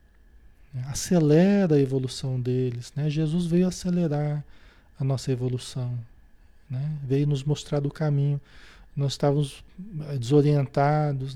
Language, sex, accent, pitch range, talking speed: Portuguese, male, Brazilian, 125-175 Hz, 105 wpm